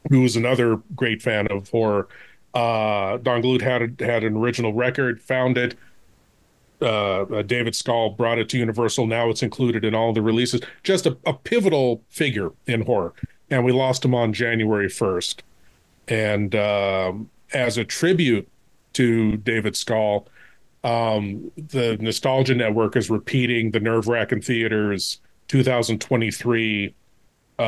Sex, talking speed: male, 140 wpm